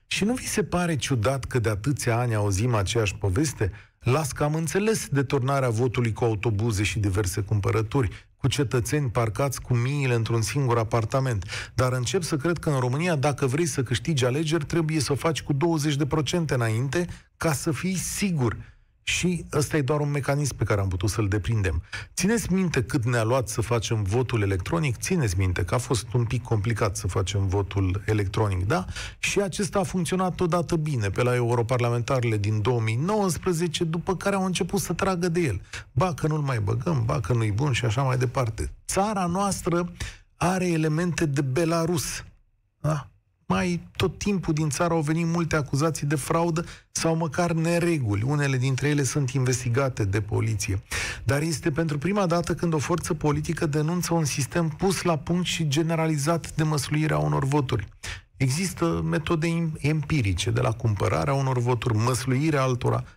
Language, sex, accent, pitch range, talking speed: Romanian, male, native, 115-165 Hz, 170 wpm